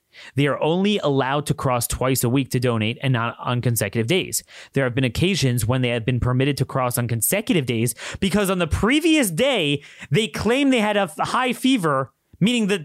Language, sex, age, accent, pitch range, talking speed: English, male, 30-49, American, 130-215 Hz, 205 wpm